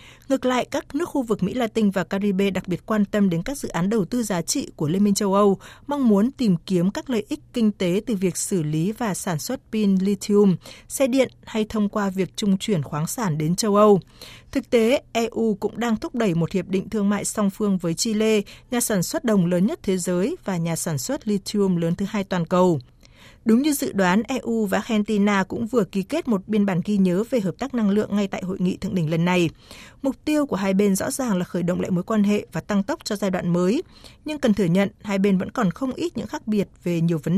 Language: Vietnamese